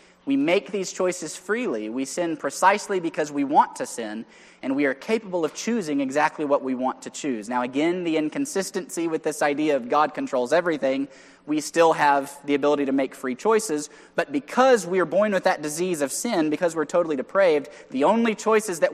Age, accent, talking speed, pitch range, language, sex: 20-39, American, 200 wpm, 140-195 Hz, English, male